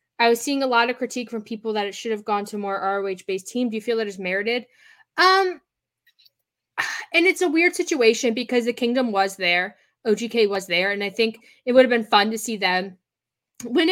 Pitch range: 200-250 Hz